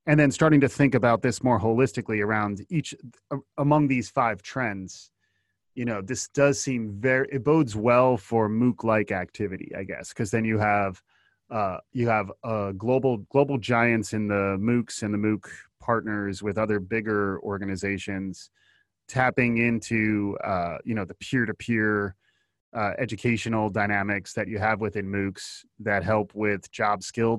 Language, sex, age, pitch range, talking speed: English, male, 30-49, 100-125 Hz, 160 wpm